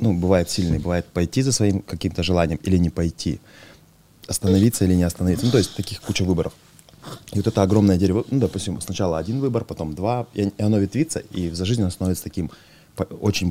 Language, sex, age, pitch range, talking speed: Russian, male, 20-39, 80-100 Hz, 195 wpm